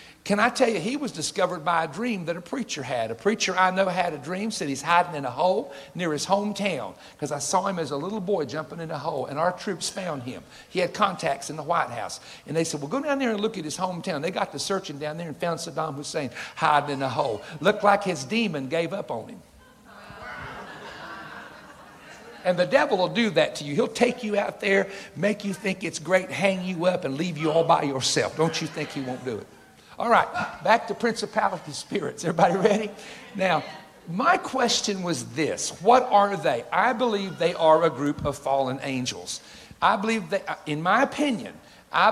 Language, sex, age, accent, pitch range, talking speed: English, male, 60-79, American, 150-205 Hz, 220 wpm